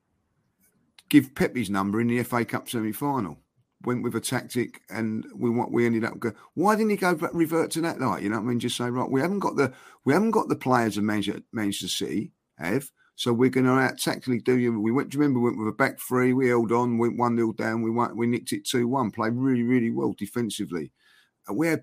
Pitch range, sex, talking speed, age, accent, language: 105-130 Hz, male, 245 wpm, 50-69, British, English